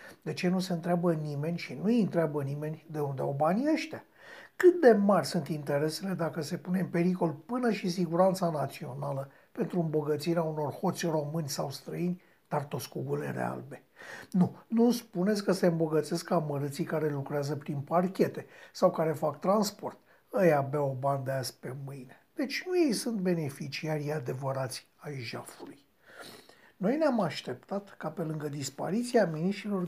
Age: 60-79